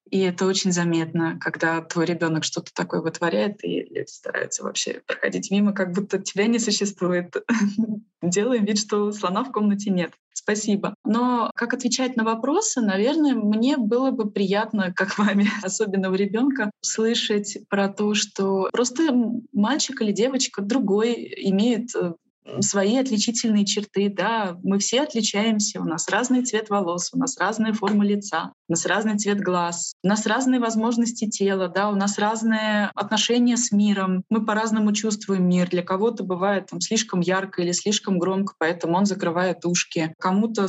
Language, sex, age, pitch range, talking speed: Russian, female, 20-39, 185-220 Hz, 155 wpm